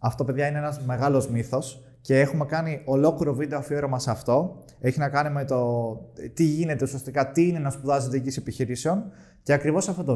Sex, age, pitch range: male, 20-39, 135-165 Hz